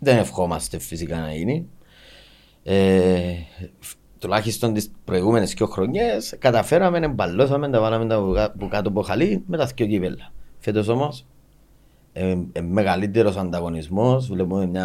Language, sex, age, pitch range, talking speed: Greek, male, 30-49, 95-125 Hz, 130 wpm